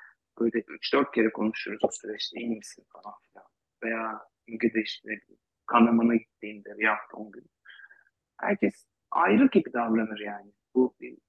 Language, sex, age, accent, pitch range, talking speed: Turkish, male, 40-59, native, 115-135 Hz, 115 wpm